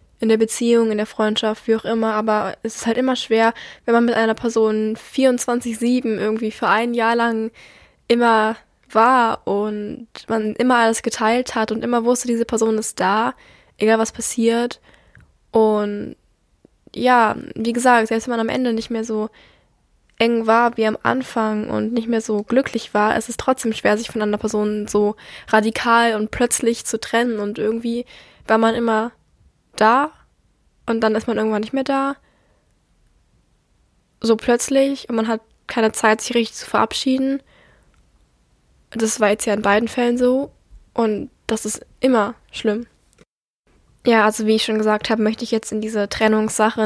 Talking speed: 170 wpm